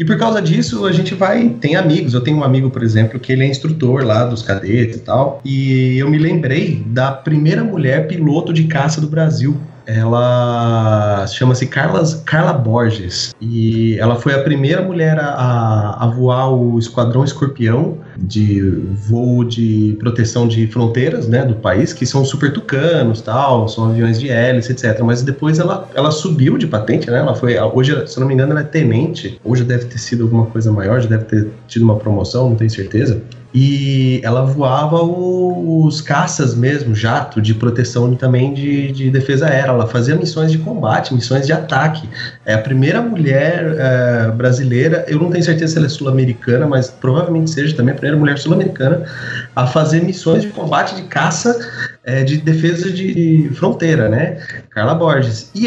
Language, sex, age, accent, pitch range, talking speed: Portuguese, male, 30-49, Brazilian, 120-160 Hz, 180 wpm